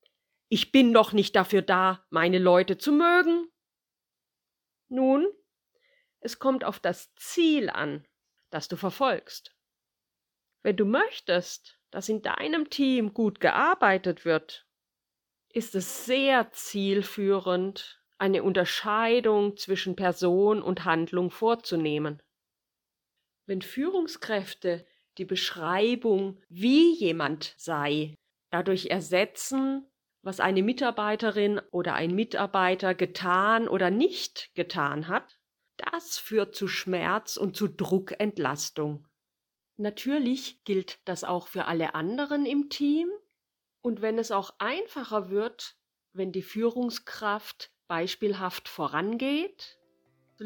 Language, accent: German, German